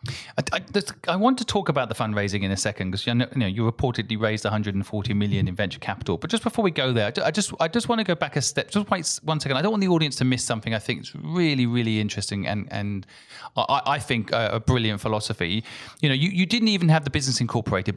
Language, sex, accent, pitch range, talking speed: English, male, British, 110-140 Hz, 255 wpm